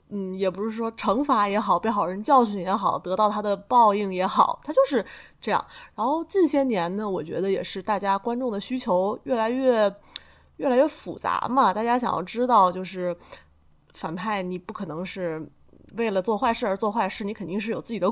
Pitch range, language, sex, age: 185-240 Hz, Chinese, female, 20-39